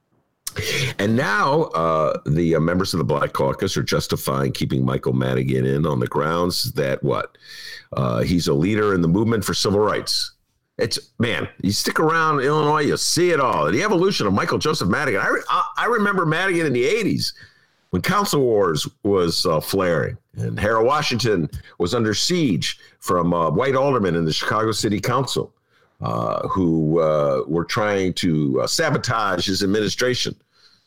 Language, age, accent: English, 50-69, American